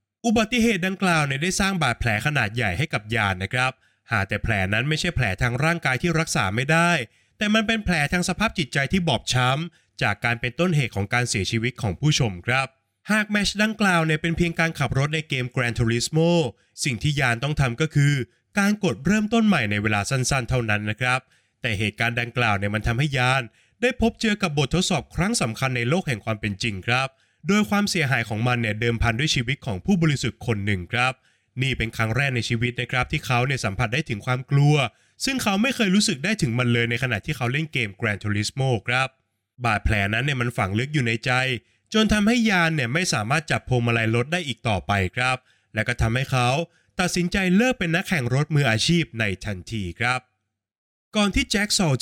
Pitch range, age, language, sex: 115-170 Hz, 20-39, Thai, male